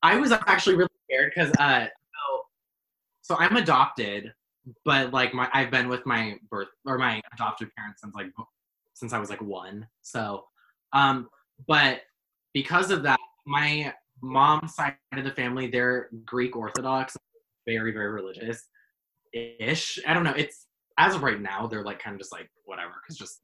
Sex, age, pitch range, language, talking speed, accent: male, 20-39, 115-140 Hz, English, 170 wpm, American